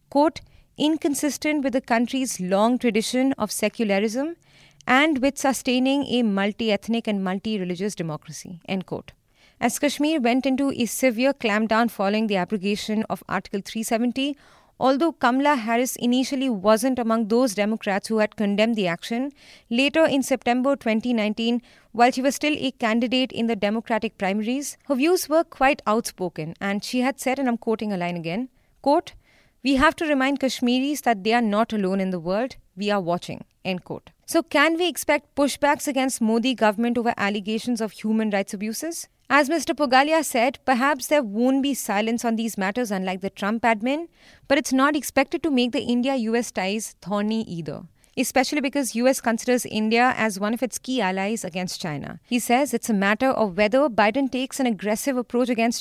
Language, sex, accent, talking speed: English, female, Indian, 170 wpm